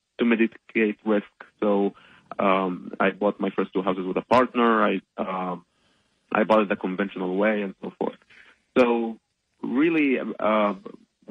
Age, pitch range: 30-49, 100-120 Hz